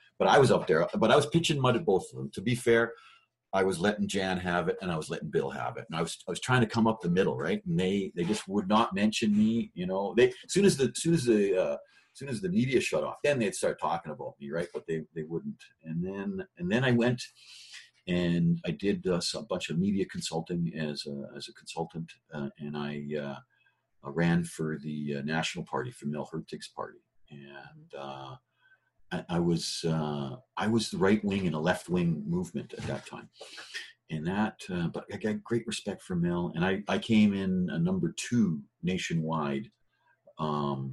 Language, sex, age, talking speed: English, male, 50-69, 225 wpm